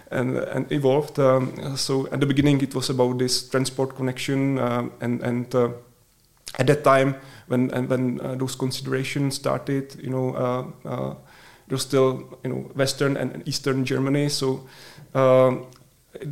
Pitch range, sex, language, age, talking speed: 125-135 Hz, male, Czech, 30-49, 160 wpm